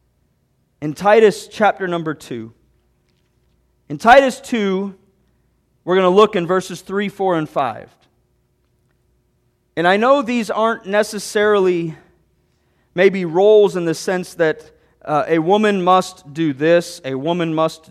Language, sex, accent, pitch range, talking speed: English, male, American, 155-230 Hz, 130 wpm